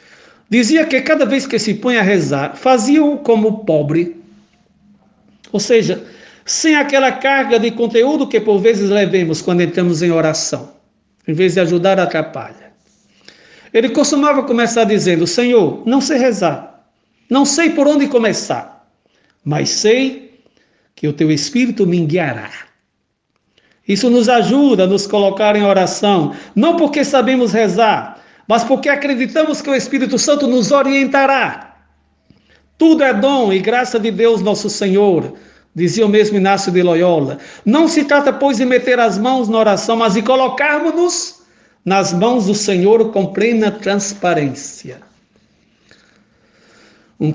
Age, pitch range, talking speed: 60-79, 195-255 Hz, 140 wpm